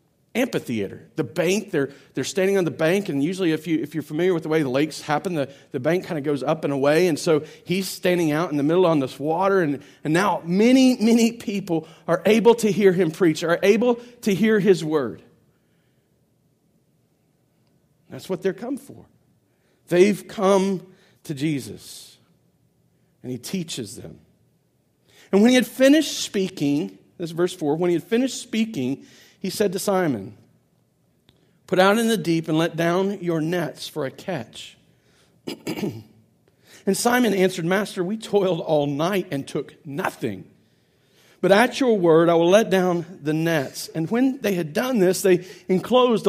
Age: 40-59